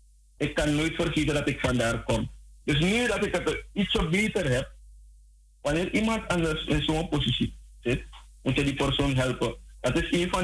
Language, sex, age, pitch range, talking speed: Dutch, male, 50-69, 110-165 Hz, 185 wpm